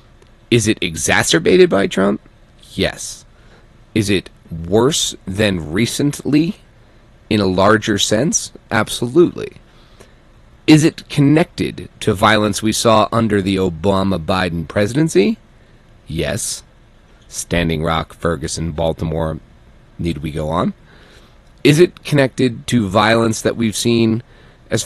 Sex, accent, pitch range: male, American, 100-125 Hz